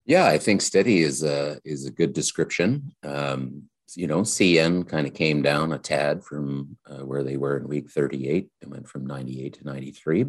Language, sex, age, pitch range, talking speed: English, male, 50-69, 70-80 Hz, 200 wpm